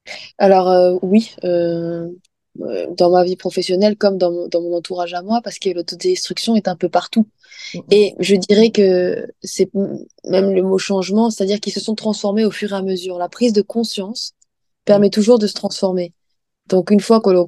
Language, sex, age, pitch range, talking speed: French, female, 20-39, 180-215 Hz, 185 wpm